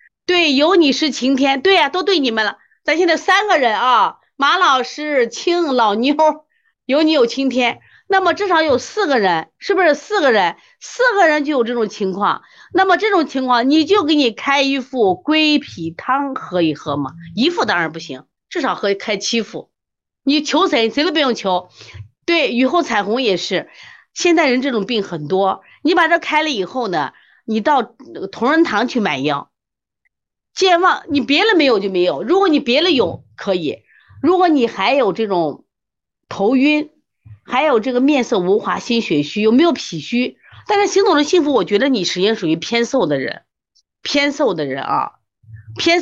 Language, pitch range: Chinese, 215-335 Hz